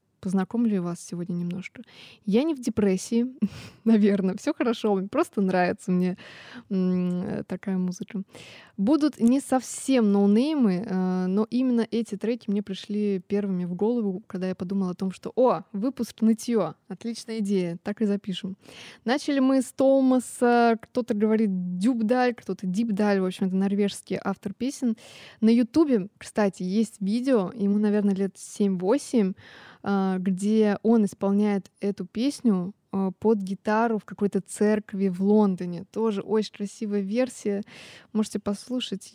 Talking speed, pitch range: 130 wpm, 190-230 Hz